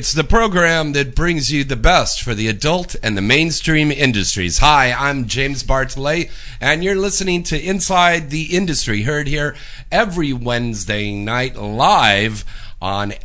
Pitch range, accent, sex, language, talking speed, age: 95-130 Hz, American, male, English, 150 wpm, 50-69